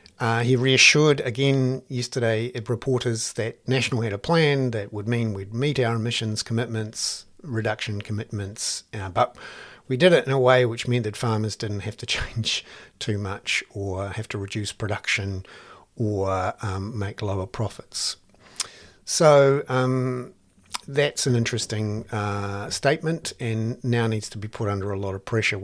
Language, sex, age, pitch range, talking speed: English, male, 50-69, 105-130 Hz, 155 wpm